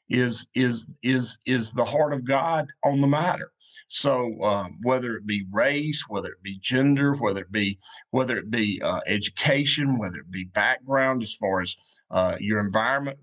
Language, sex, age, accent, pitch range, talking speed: English, male, 50-69, American, 110-140 Hz, 175 wpm